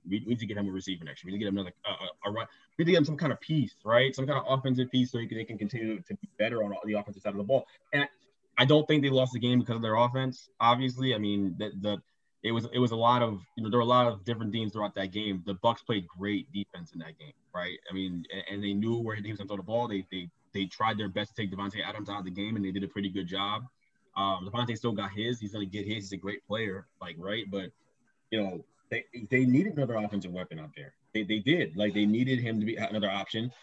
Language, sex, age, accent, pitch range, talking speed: English, male, 20-39, American, 105-145 Hz, 300 wpm